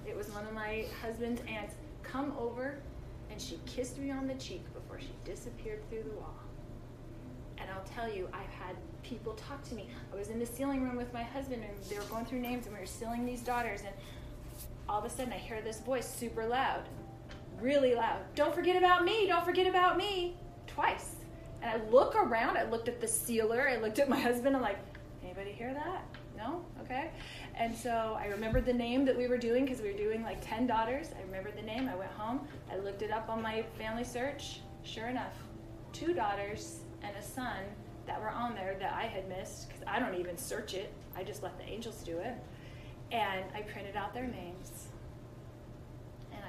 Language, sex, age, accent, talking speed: English, female, 20-39, American, 210 wpm